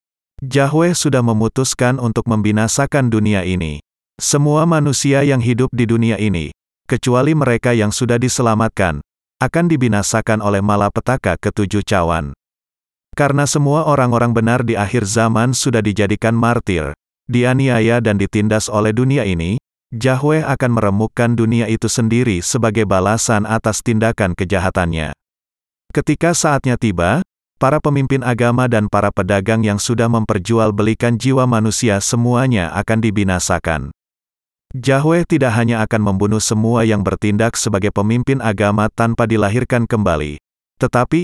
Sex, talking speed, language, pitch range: male, 125 wpm, Indonesian, 100-125 Hz